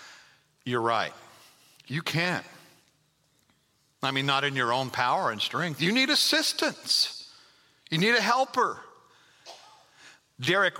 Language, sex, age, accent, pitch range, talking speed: English, male, 50-69, American, 150-200 Hz, 120 wpm